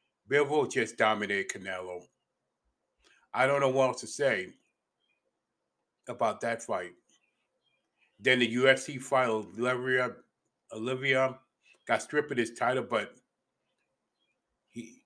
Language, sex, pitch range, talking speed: English, male, 115-140 Hz, 110 wpm